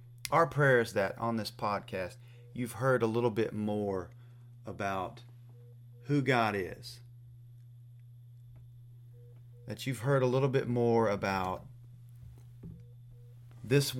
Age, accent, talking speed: 30-49, American, 110 wpm